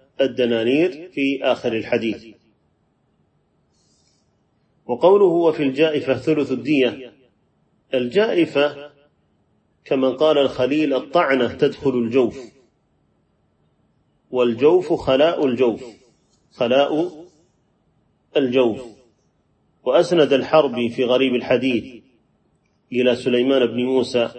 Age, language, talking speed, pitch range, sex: 30-49, Arabic, 75 wpm, 125-155 Hz, male